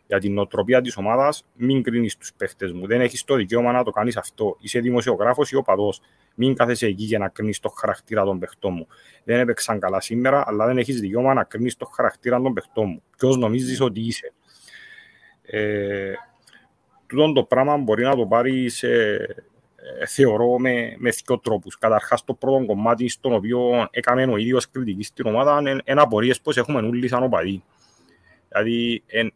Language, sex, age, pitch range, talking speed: English, male, 30-49, 110-135 Hz, 170 wpm